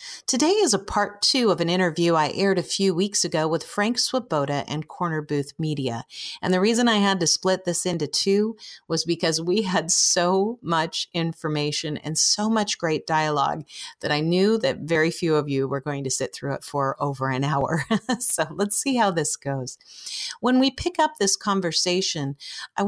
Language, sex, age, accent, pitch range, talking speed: English, female, 40-59, American, 155-205 Hz, 195 wpm